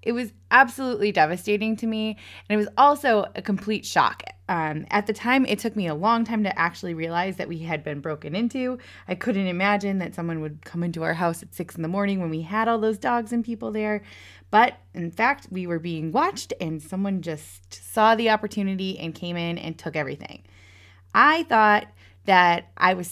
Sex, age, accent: female, 20-39, American